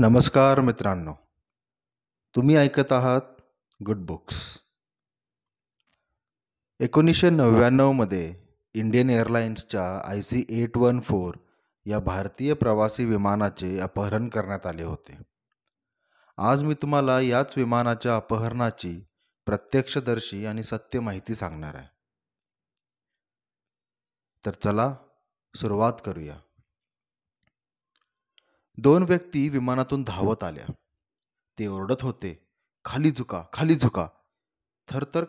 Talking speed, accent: 80 wpm, native